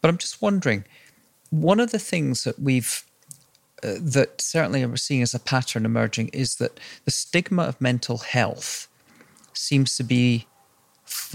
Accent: British